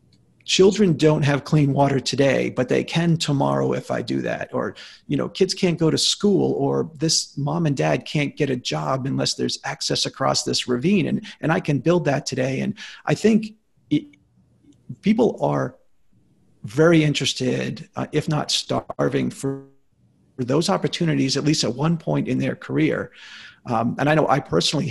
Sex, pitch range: male, 130-155 Hz